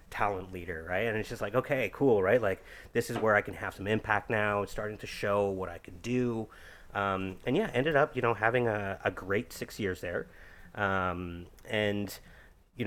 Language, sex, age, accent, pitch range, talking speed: English, male, 30-49, American, 95-115 Hz, 210 wpm